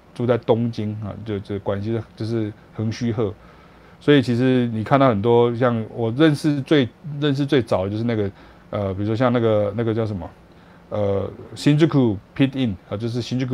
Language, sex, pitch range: Chinese, male, 110-135 Hz